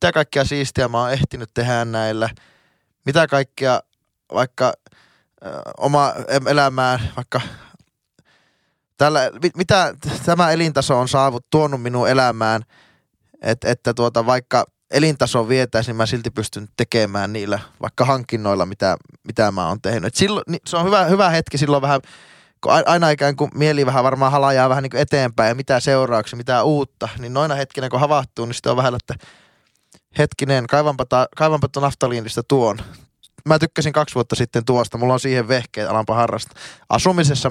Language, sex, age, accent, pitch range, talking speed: Finnish, male, 10-29, native, 115-145 Hz, 155 wpm